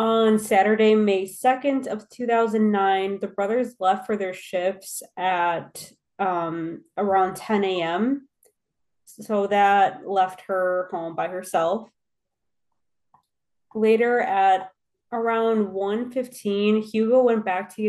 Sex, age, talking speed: female, 20-39, 105 wpm